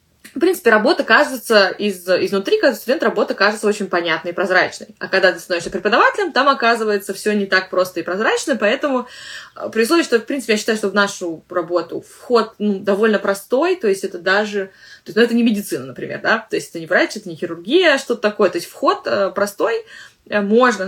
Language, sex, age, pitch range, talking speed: Russian, female, 20-39, 190-240 Hz, 195 wpm